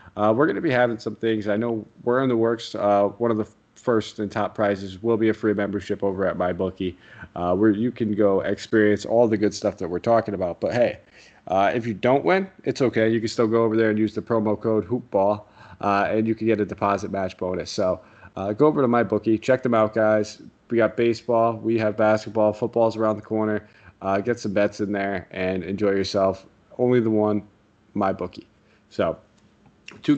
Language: English